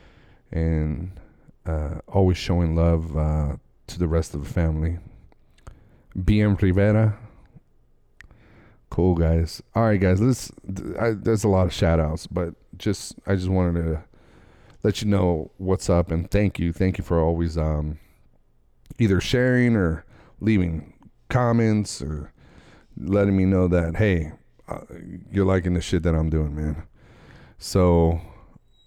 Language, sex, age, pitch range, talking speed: English, male, 30-49, 85-100 Hz, 135 wpm